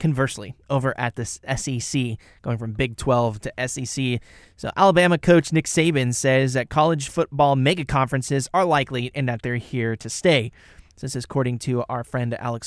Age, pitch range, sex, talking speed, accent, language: 20-39, 115-140 Hz, male, 175 wpm, American, English